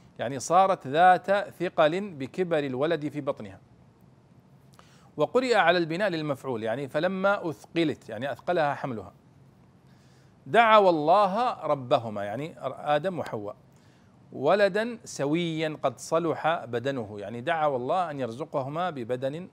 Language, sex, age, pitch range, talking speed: Arabic, male, 40-59, 125-170 Hz, 110 wpm